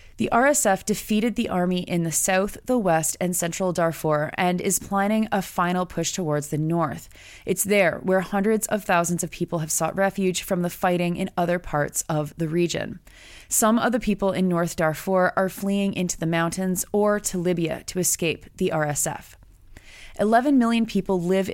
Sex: female